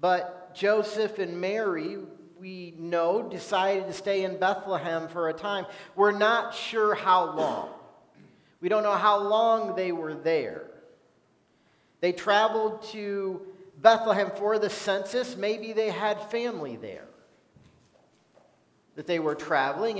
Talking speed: 130 wpm